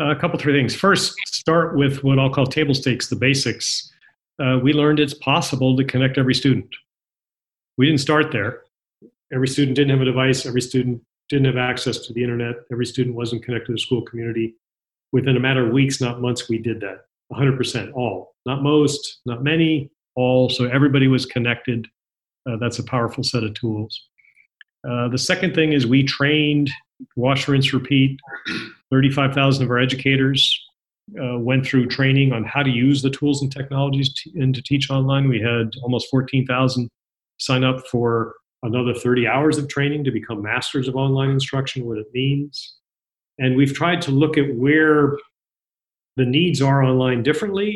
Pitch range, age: 125-140 Hz, 40-59